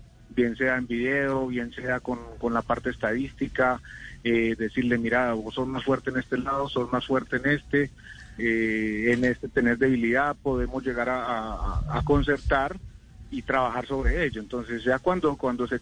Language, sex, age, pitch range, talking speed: Spanish, male, 40-59, 120-145 Hz, 170 wpm